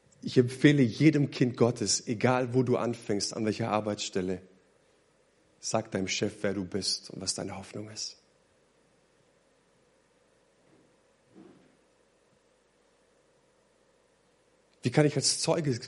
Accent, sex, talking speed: German, male, 105 wpm